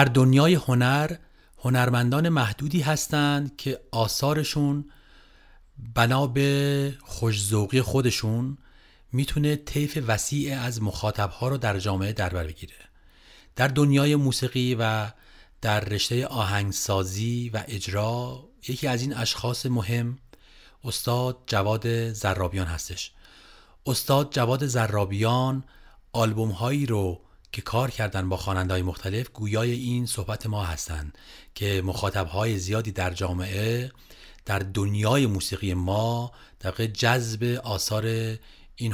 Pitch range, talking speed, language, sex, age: 100-130 Hz, 110 wpm, Persian, male, 40-59